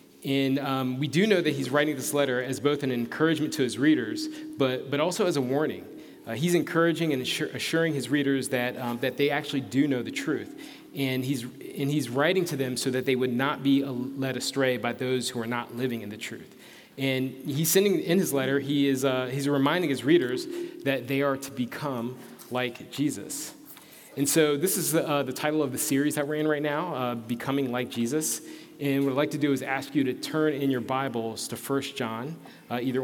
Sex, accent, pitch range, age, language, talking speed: male, American, 125-145 Hz, 30-49, English, 220 wpm